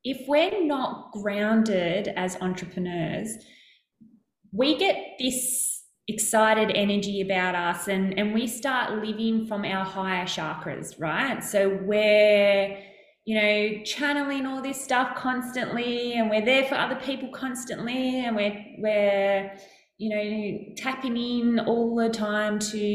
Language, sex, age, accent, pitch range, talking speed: English, female, 20-39, Australian, 195-235 Hz, 130 wpm